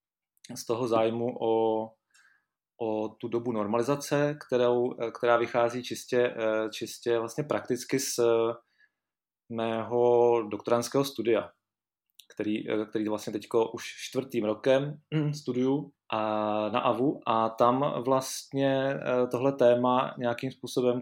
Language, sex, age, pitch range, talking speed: Czech, male, 20-39, 110-125 Hz, 105 wpm